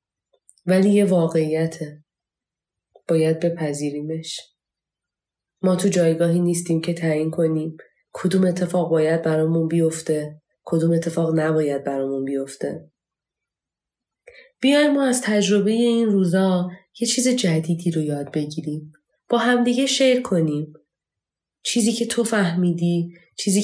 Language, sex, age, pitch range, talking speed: Persian, female, 30-49, 155-200 Hz, 110 wpm